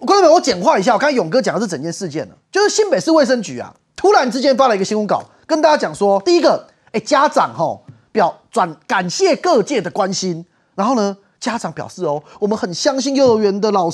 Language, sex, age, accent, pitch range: Chinese, male, 30-49, native, 210-315 Hz